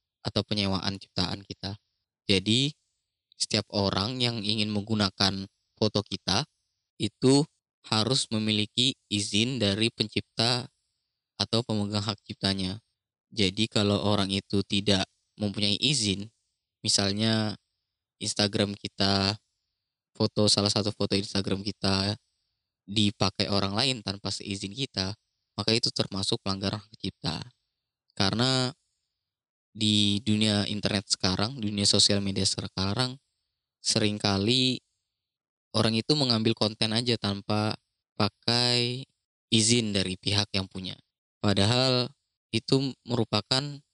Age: 20-39